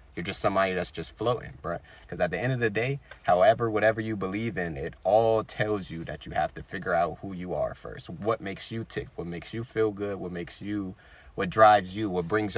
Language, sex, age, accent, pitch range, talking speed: English, male, 30-49, American, 95-120 Hz, 240 wpm